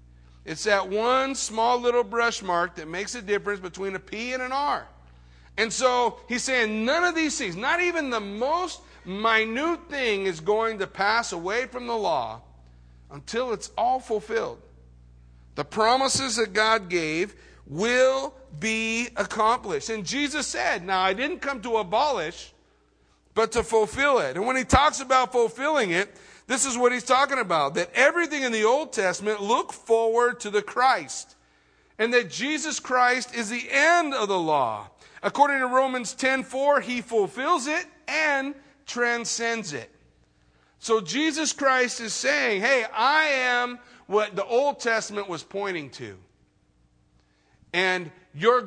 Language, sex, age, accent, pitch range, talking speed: English, male, 50-69, American, 195-260 Hz, 155 wpm